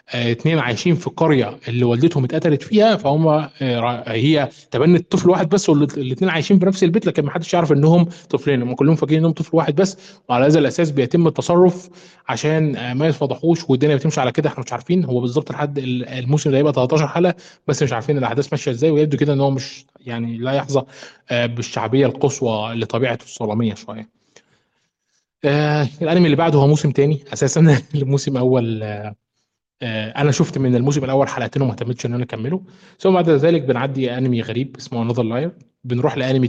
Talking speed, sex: 180 wpm, male